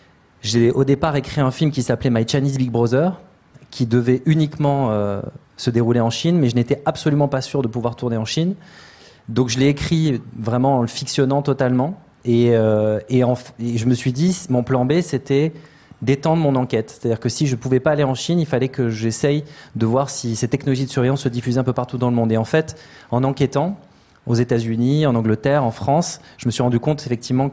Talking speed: 225 wpm